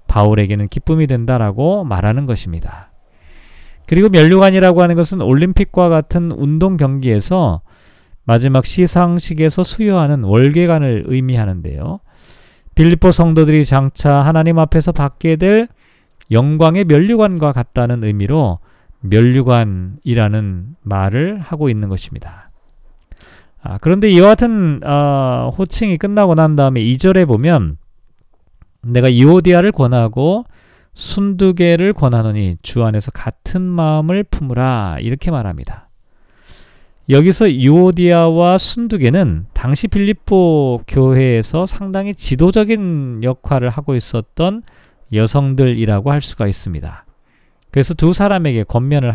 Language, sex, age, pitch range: Korean, male, 40-59, 115-175 Hz